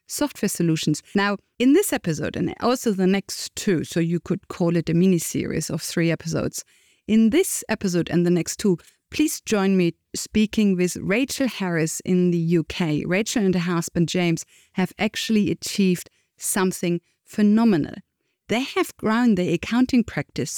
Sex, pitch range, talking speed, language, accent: female, 175-225 Hz, 160 wpm, English, German